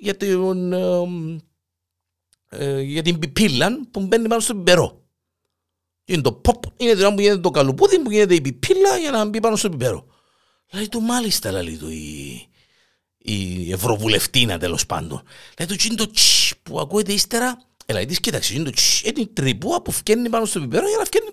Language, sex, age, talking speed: Greek, male, 50-69, 160 wpm